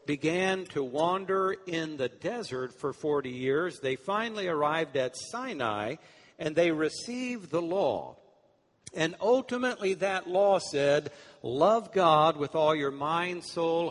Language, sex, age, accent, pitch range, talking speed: English, male, 60-79, American, 145-195 Hz, 135 wpm